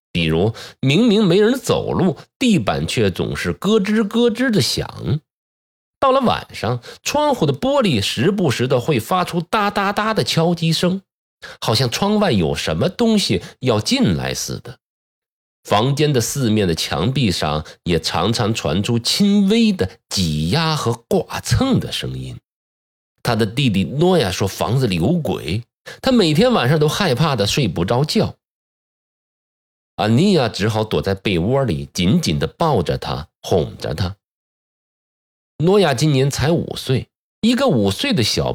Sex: male